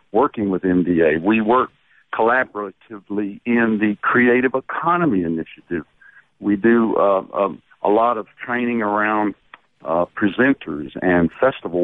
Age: 60-79